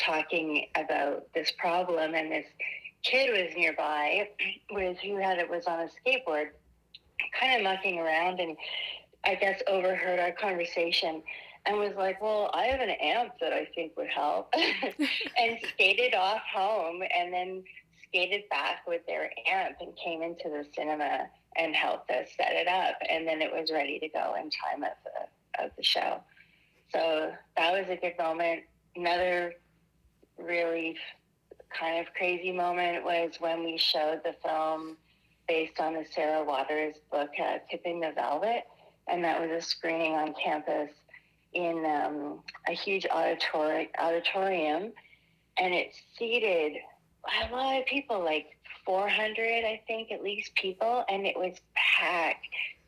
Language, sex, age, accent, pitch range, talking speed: English, female, 40-59, American, 160-200 Hz, 155 wpm